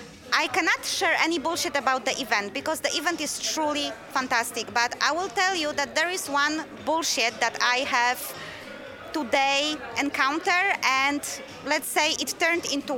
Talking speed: 160 wpm